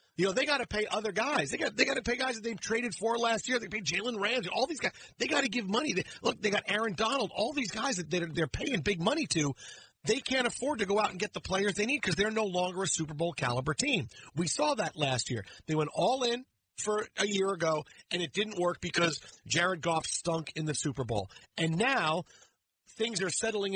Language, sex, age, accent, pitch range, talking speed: English, male, 40-59, American, 155-215 Hz, 255 wpm